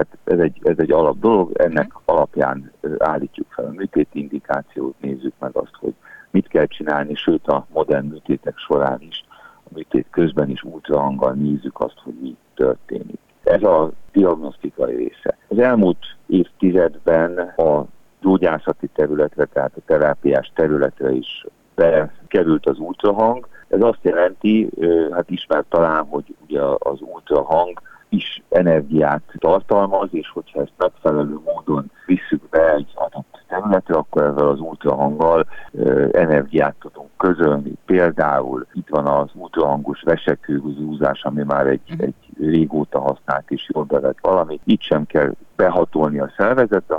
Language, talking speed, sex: Hungarian, 135 wpm, male